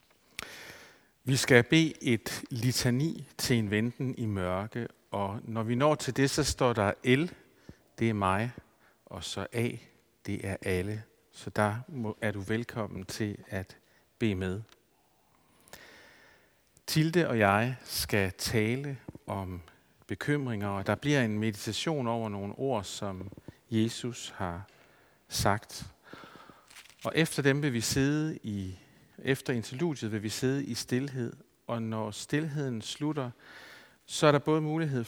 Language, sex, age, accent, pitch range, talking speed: Danish, male, 60-79, native, 105-135 Hz, 135 wpm